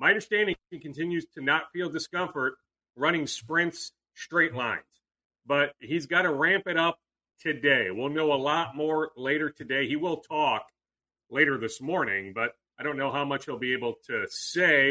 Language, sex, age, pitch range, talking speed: English, male, 40-59, 155-205 Hz, 175 wpm